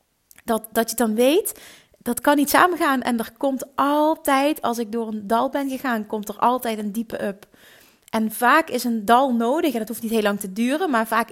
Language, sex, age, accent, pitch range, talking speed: Dutch, female, 30-49, Dutch, 220-280 Hz, 225 wpm